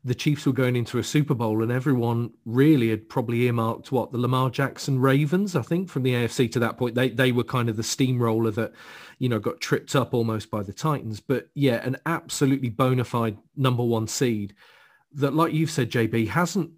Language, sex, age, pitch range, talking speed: English, male, 40-59, 110-135 Hz, 210 wpm